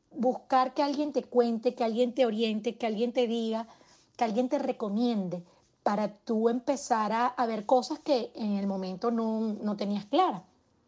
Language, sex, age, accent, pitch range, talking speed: Spanish, female, 30-49, American, 210-260 Hz, 175 wpm